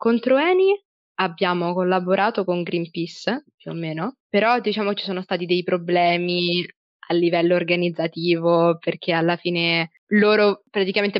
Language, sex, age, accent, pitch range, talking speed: Italian, female, 20-39, native, 175-205 Hz, 130 wpm